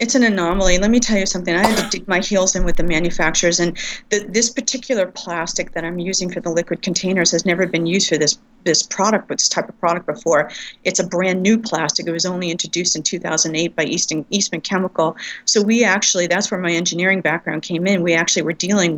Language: English